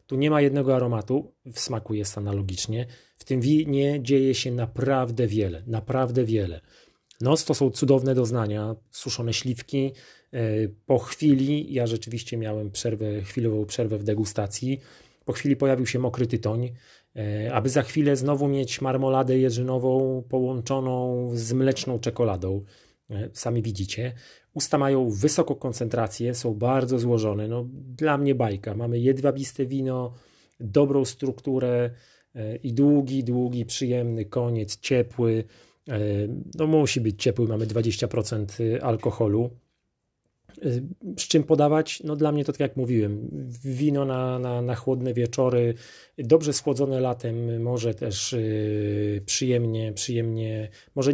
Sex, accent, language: male, native, Polish